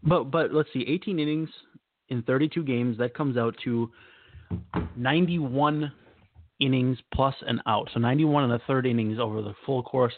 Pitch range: 115-140 Hz